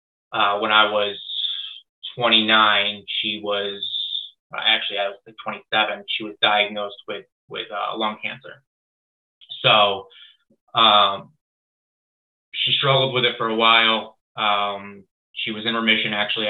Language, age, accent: English, 20-39, American